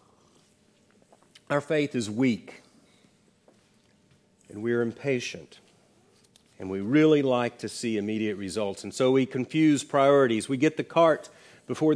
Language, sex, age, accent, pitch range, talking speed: English, male, 40-59, American, 115-150 Hz, 130 wpm